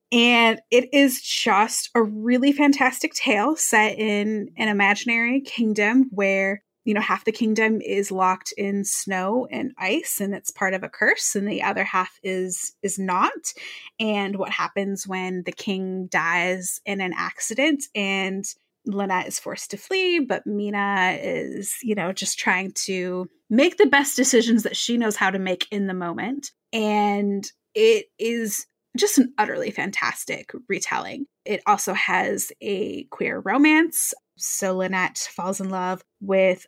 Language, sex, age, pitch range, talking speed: English, female, 20-39, 190-250 Hz, 155 wpm